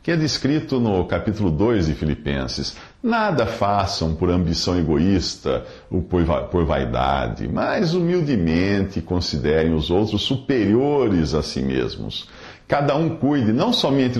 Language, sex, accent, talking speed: English, male, Brazilian, 130 wpm